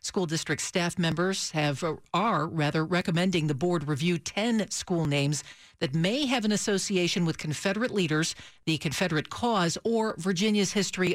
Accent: American